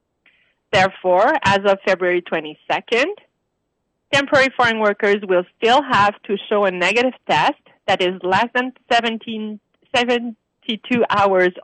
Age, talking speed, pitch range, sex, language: 30-49, 115 wpm, 190-240 Hz, female, English